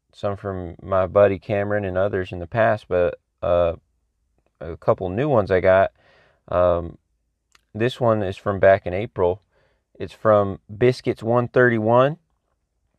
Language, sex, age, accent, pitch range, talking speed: English, male, 30-49, American, 90-115 Hz, 140 wpm